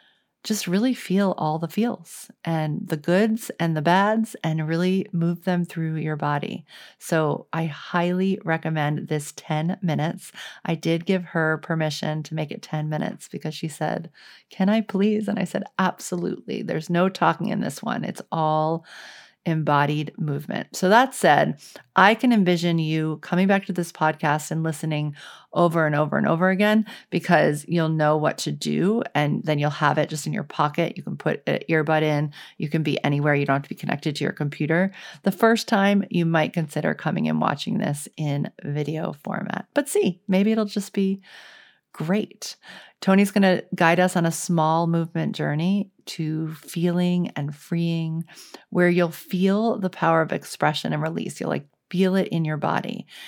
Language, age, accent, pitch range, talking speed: English, 40-59, American, 155-195 Hz, 180 wpm